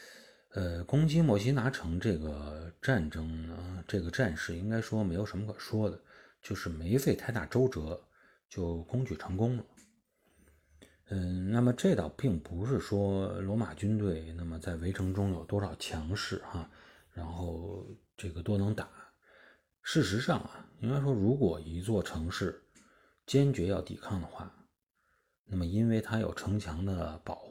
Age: 30-49